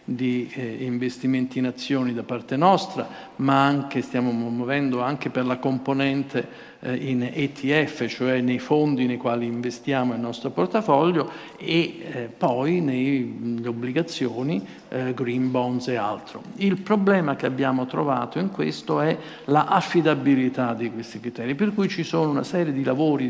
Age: 50-69